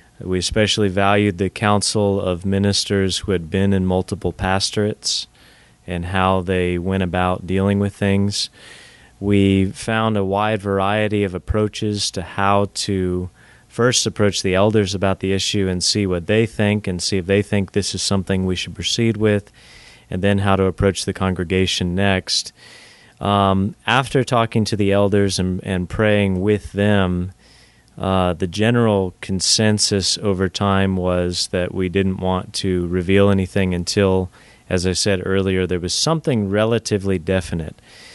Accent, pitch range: American, 95-105 Hz